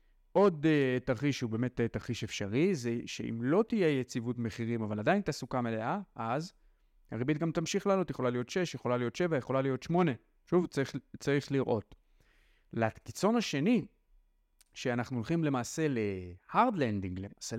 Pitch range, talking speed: 110-150 Hz, 155 wpm